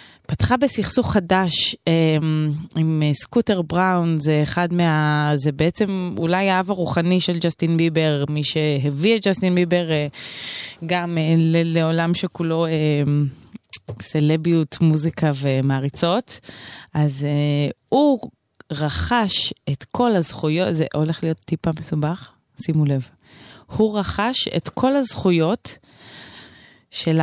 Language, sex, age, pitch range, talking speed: Hebrew, female, 20-39, 145-185 Hz, 105 wpm